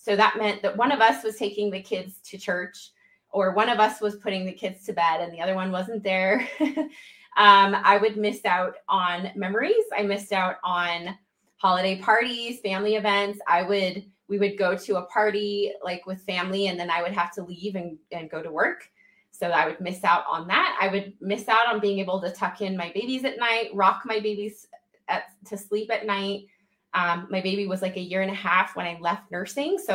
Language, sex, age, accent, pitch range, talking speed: English, female, 20-39, American, 190-220 Hz, 220 wpm